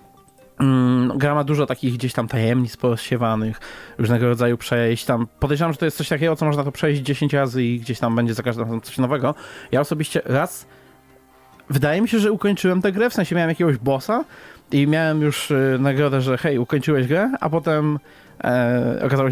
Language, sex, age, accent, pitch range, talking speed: Polish, male, 20-39, native, 120-150 Hz, 185 wpm